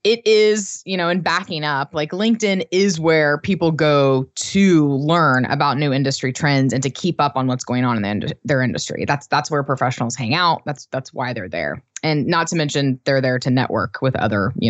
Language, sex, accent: English, female, American